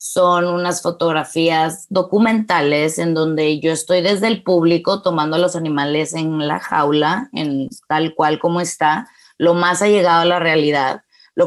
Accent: Mexican